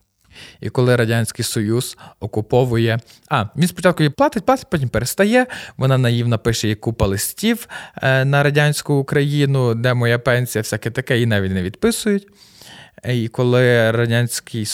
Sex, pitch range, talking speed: male, 115-150 Hz, 135 wpm